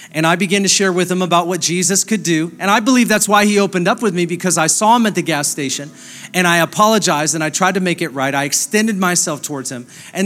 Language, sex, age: English, male, 40-59